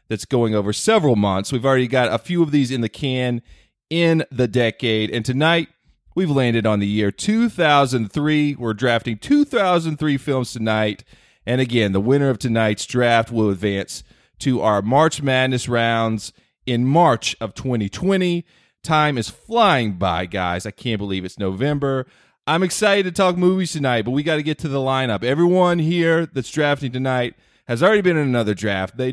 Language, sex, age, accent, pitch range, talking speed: English, male, 30-49, American, 110-160 Hz, 175 wpm